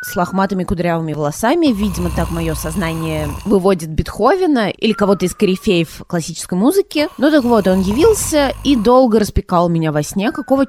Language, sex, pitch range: Russian, female, 170-250 Hz